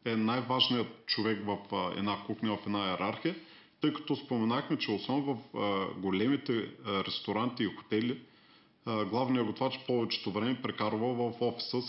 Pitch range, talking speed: 105-130 Hz, 140 wpm